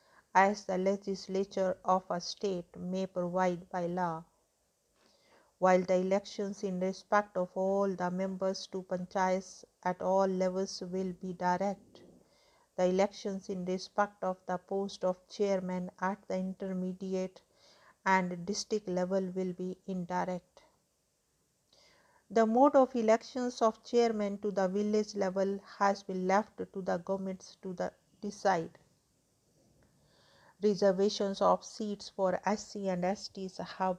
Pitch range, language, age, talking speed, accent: 185-200 Hz, English, 50-69, 125 wpm, Indian